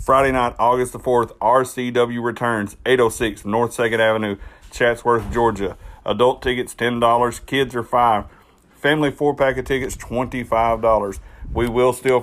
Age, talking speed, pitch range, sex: 40-59, 135 wpm, 115-130 Hz, male